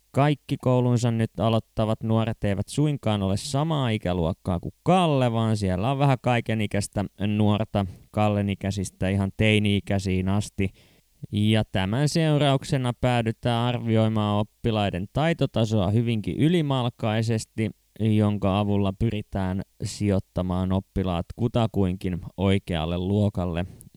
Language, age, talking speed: Finnish, 20-39, 100 wpm